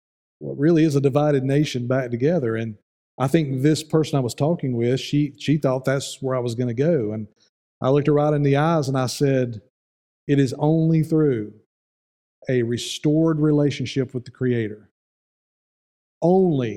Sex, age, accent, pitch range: male, 50-69, American, 120-150 Hz